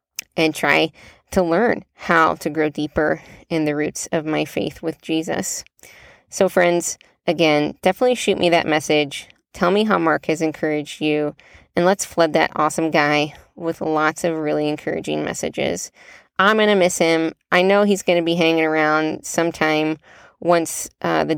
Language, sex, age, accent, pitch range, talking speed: English, female, 20-39, American, 150-170 Hz, 165 wpm